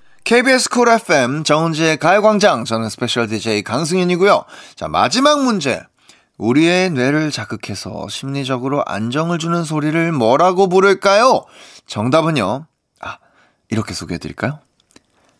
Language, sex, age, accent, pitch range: Korean, male, 20-39, native, 120-195 Hz